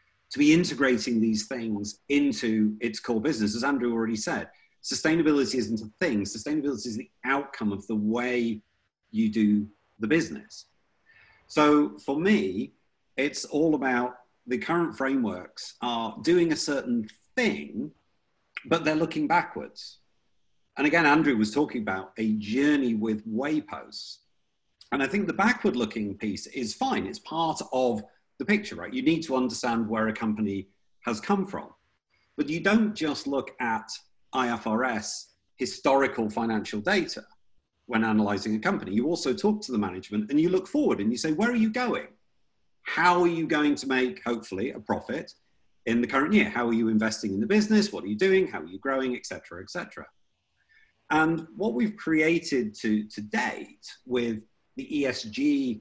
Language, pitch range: English, 110-165 Hz